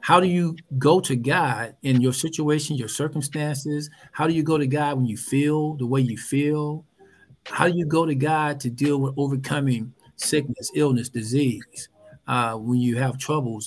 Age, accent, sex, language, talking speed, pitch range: 50-69, American, male, English, 185 wpm, 130-160 Hz